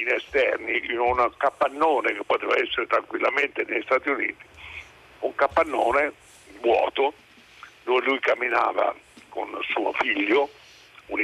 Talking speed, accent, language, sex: 115 wpm, native, Italian, male